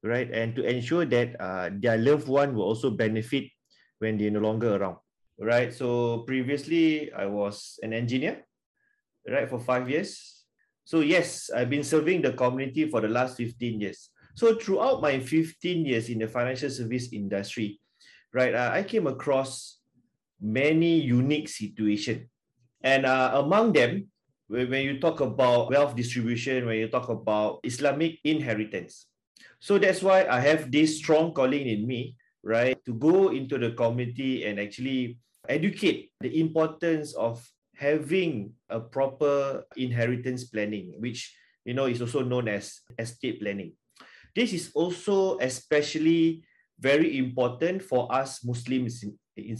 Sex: male